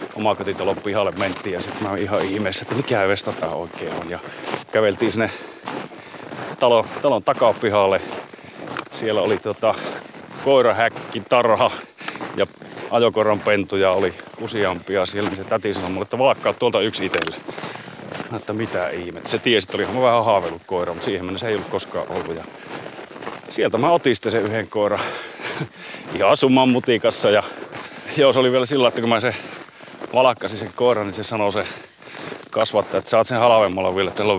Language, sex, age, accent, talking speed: Finnish, male, 30-49, native, 155 wpm